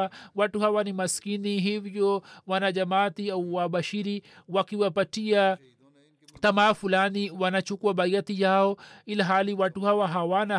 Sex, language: male, Swahili